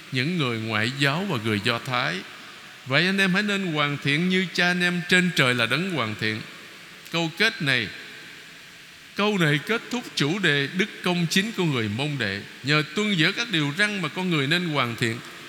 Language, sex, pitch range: Vietnamese, male, 125-170 Hz